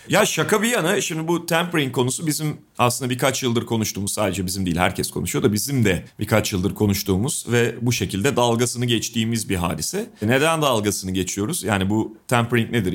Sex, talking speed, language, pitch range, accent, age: male, 175 wpm, Turkish, 105-135 Hz, native, 40-59